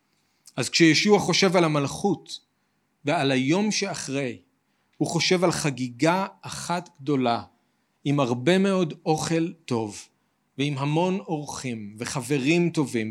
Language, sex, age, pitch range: Hebrew, male, 40-59, 130-170 Hz